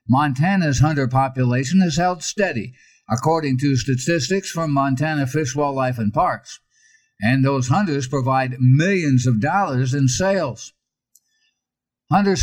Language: English